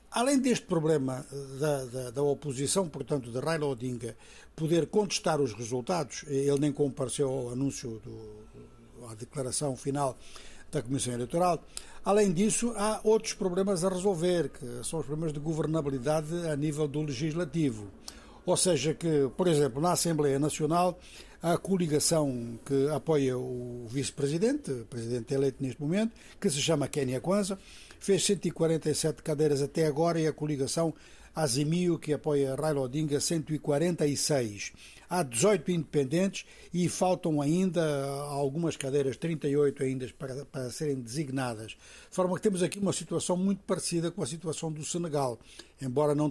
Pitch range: 135-170 Hz